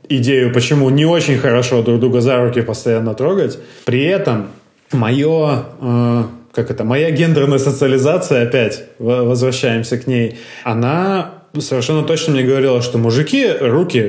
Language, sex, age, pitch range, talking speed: Russian, male, 20-39, 120-140 Hz, 135 wpm